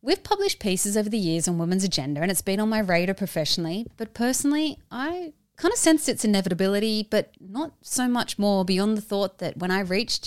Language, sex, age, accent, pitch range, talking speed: English, female, 20-39, Australian, 170-230 Hz, 210 wpm